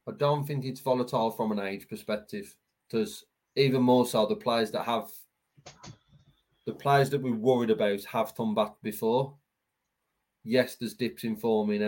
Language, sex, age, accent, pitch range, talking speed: English, male, 20-39, British, 110-135 Hz, 160 wpm